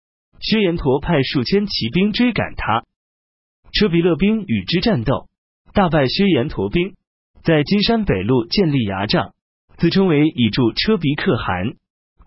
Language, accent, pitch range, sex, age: Chinese, native, 115-195 Hz, male, 30-49